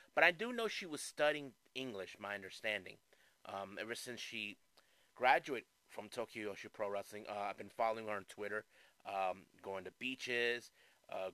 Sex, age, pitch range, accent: male, 30-49, 100-145 Hz, American